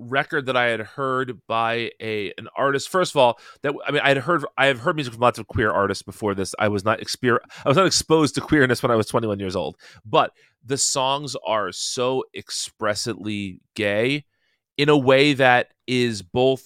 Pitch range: 105-140 Hz